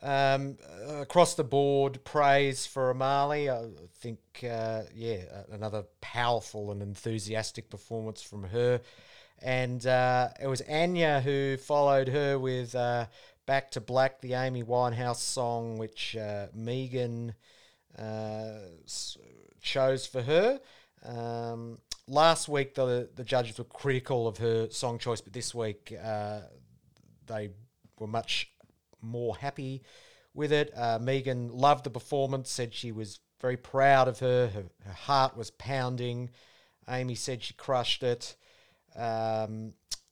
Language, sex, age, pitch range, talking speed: English, male, 40-59, 110-135 Hz, 130 wpm